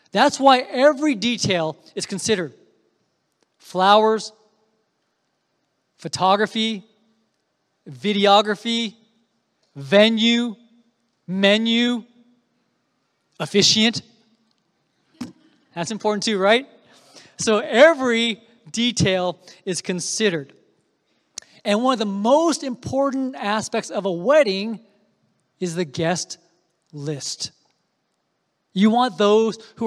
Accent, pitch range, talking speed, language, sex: American, 180-225 Hz, 80 wpm, English, male